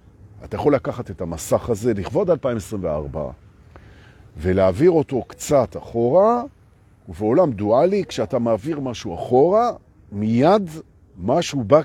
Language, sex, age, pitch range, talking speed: Hebrew, male, 50-69, 100-155 Hz, 105 wpm